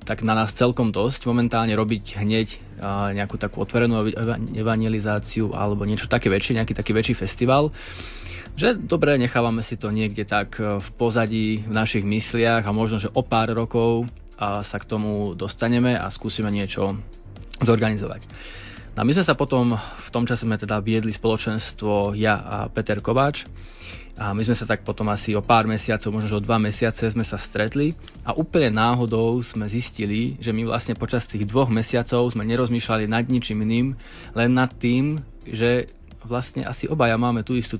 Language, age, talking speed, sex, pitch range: Slovak, 20-39, 170 wpm, male, 105-120 Hz